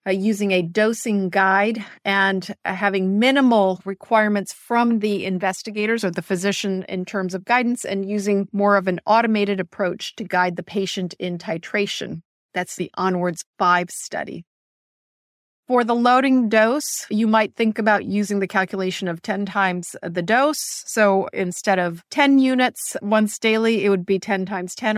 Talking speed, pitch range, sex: 160 wpm, 190-230 Hz, female